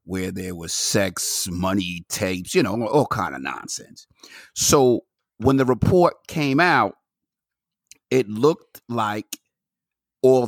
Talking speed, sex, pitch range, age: 125 wpm, male, 110-135 Hz, 50-69